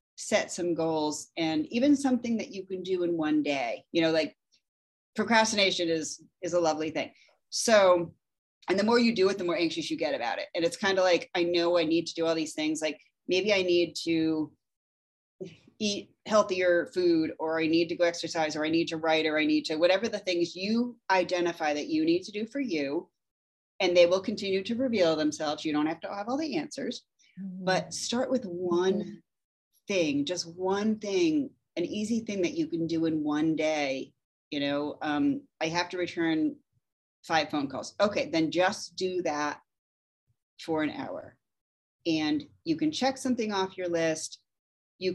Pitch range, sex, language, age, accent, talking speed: 160-215 Hz, female, English, 30-49, American, 195 wpm